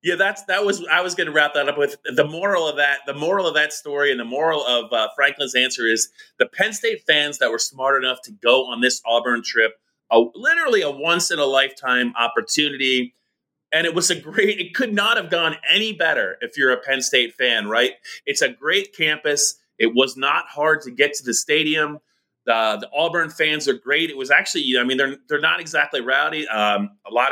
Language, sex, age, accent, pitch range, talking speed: English, male, 30-49, American, 120-180 Hz, 225 wpm